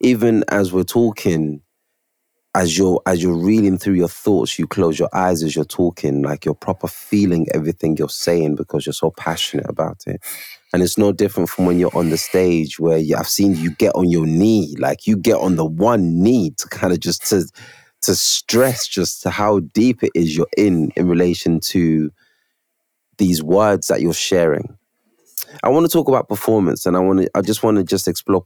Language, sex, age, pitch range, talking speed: English, male, 20-39, 85-105 Hz, 205 wpm